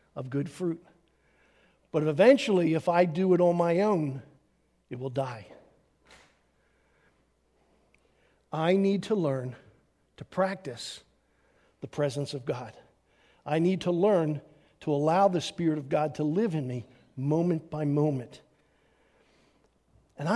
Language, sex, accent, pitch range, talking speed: English, male, American, 150-220 Hz, 125 wpm